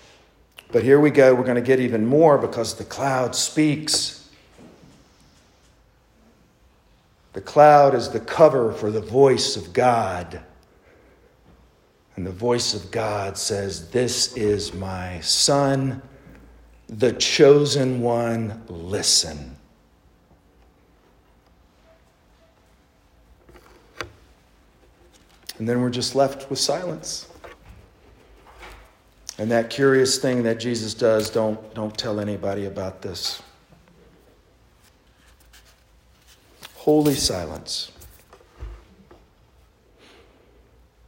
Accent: American